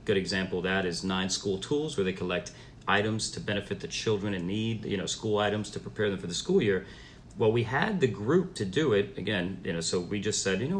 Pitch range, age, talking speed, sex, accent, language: 95-125 Hz, 40-59, 255 wpm, male, American, English